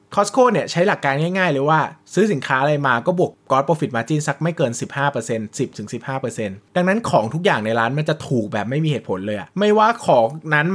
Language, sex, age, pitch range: Thai, male, 20-39, 120-160 Hz